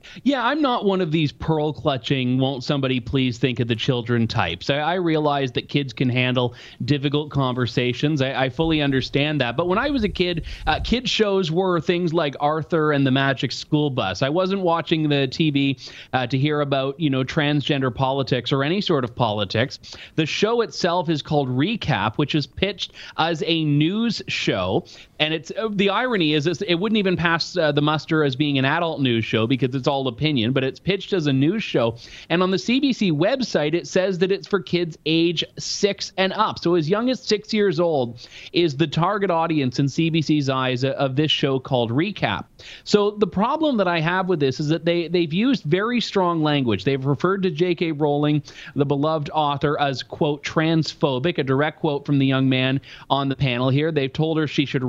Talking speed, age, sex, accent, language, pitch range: 205 wpm, 30-49, male, American, English, 135-175 Hz